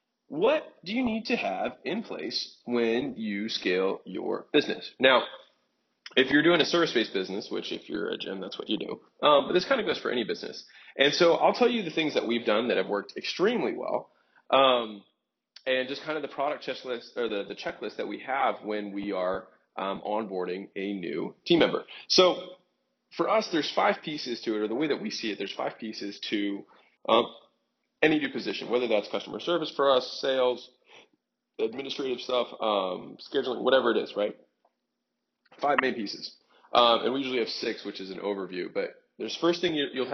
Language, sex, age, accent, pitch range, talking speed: English, male, 20-39, American, 105-170 Hz, 195 wpm